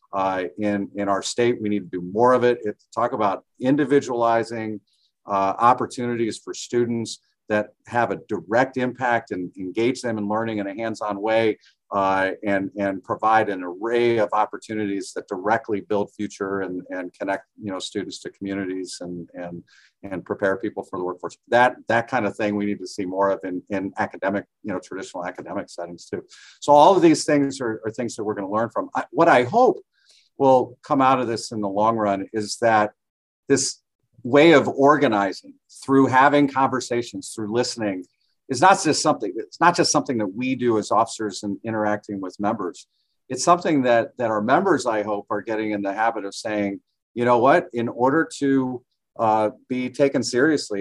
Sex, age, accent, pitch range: male, 50-69, American, 100-125 Hz